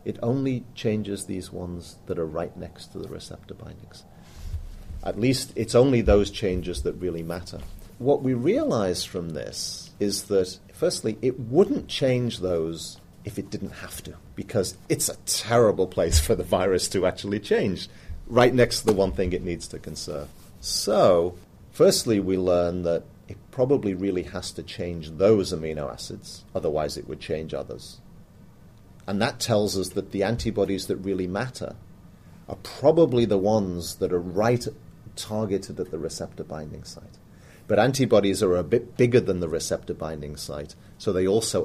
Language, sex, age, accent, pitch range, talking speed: English, male, 40-59, British, 85-110 Hz, 165 wpm